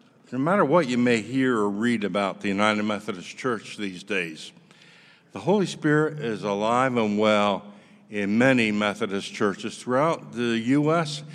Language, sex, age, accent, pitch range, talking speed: English, male, 60-79, American, 110-140 Hz, 155 wpm